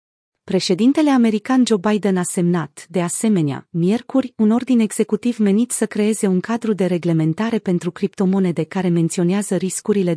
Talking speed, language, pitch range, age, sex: 140 wpm, Romanian, 175-220 Hz, 30-49, female